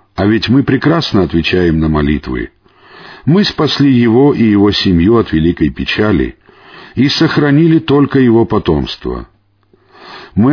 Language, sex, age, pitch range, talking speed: Russian, male, 50-69, 95-135 Hz, 125 wpm